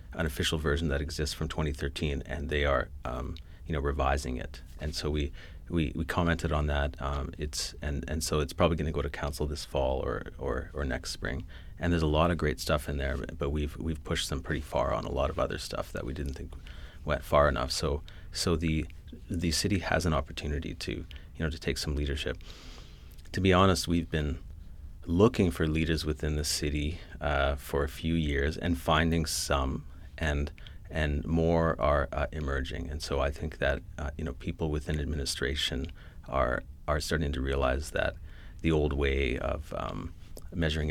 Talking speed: 195 wpm